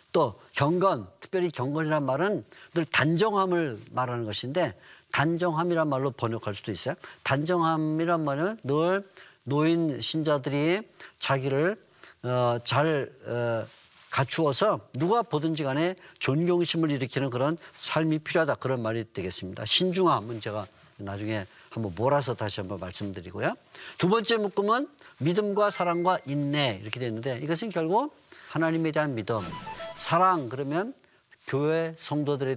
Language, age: Korean, 50-69